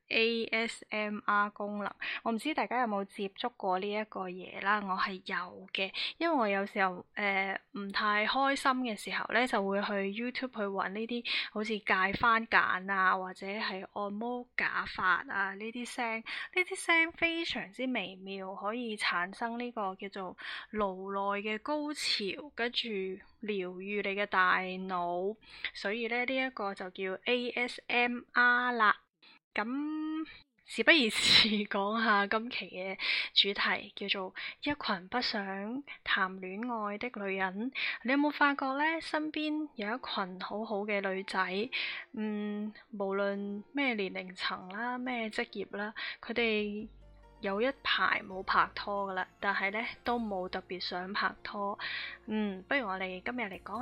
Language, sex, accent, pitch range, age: Chinese, female, native, 195-245 Hz, 10-29